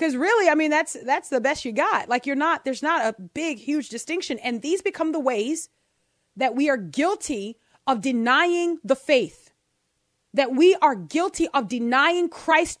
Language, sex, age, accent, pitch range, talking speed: Russian, female, 30-49, American, 220-305 Hz, 185 wpm